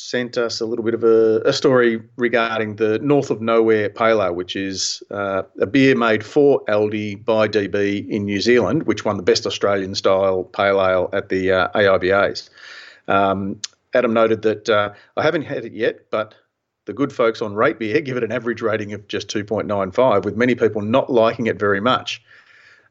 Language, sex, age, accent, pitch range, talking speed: English, male, 40-59, Australian, 105-140 Hz, 195 wpm